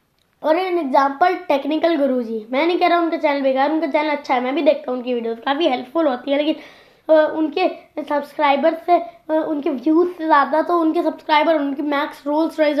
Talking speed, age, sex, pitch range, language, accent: 195 wpm, 20-39, female, 275-325 Hz, Hindi, native